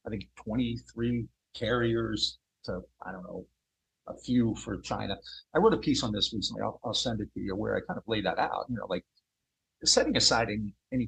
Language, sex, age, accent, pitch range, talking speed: English, male, 50-69, American, 110-130 Hz, 210 wpm